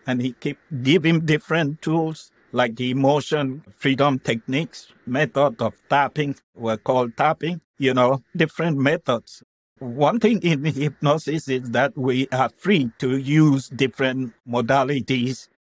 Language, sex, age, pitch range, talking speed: English, male, 60-79, 120-145 Hz, 130 wpm